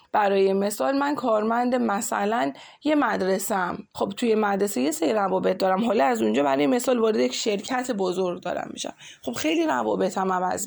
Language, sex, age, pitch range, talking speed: Persian, female, 20-39, 185-225 Hz, 155 wpm